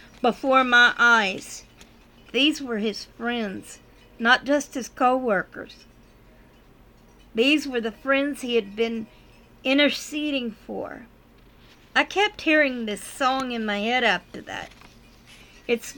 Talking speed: 115 wpm